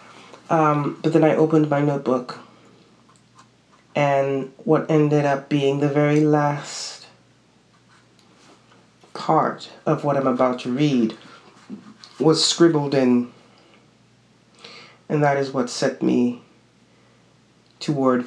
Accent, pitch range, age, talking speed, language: American, 125-155 Hz, 30-49, 105 wpm, English